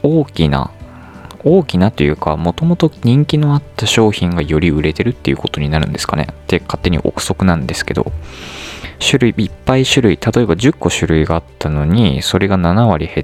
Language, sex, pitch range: Japanese, male, 80-115 Hz